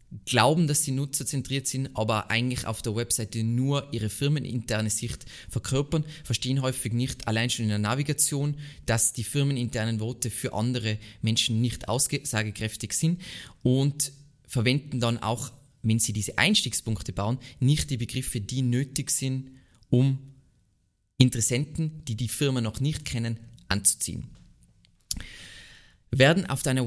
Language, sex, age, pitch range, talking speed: German, male, 20-39, 115-140 Hz, 135 wpm